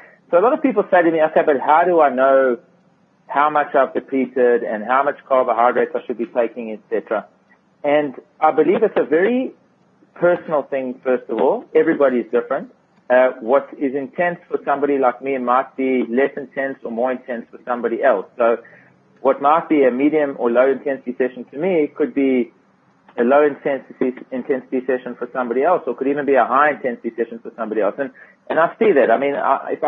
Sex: male